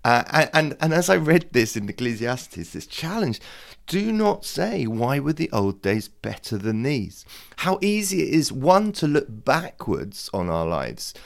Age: 30-49